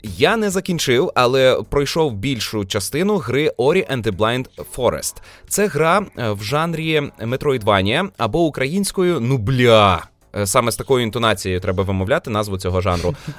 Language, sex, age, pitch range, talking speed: Ukrainian, male, 20-39, 105-150 Hz, 135 wpm